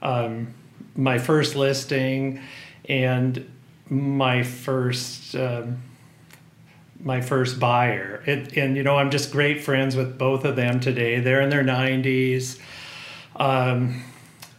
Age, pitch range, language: 40-59, 125-145 Hz, English